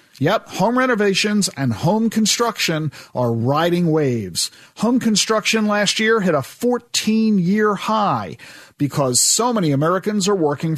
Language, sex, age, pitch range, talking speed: English, male, 50-69, 150-240 Hz, 130 wpm